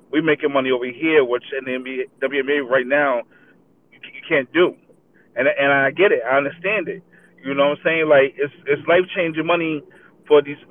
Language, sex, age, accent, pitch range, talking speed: English, male, 30-49, American, 140-165 Hz, 200 wpm